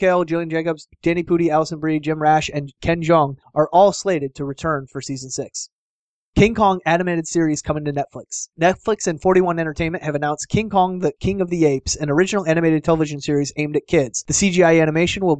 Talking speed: 205 wpm